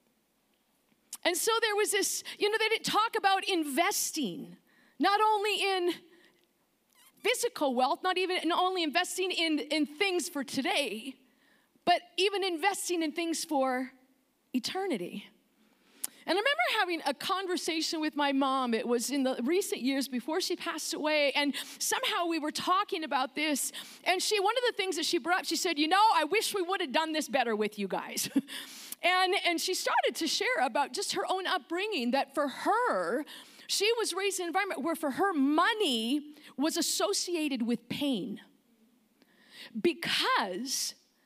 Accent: American